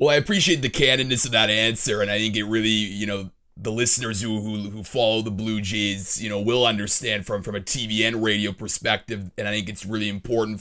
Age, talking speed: 30-49, 230 wpm